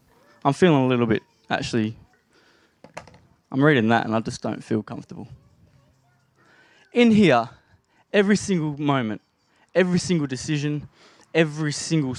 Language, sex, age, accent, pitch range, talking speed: English, male, 20-39, Australian, 125-160 Hz, 125 wpm